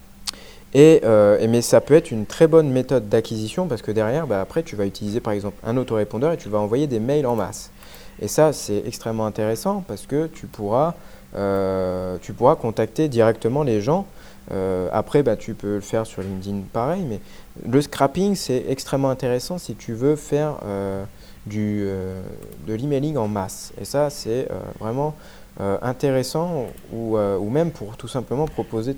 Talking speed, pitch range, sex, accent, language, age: 175 wpm, 100-135 Hz, male, French, English, 20-39